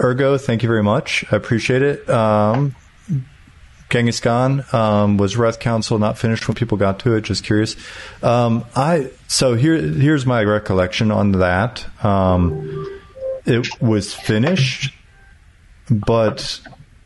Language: English